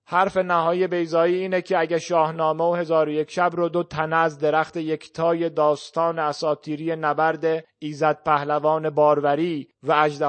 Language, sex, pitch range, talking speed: Persian, male, 145-165 Hz, 145 wpm